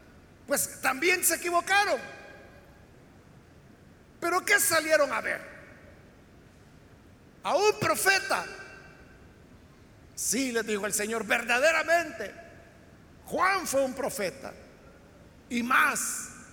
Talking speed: 85 wpm